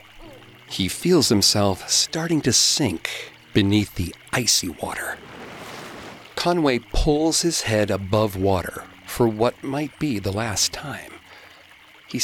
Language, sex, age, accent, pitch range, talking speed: English, male, 50-69, American, 95-150 Hz, 120 wpm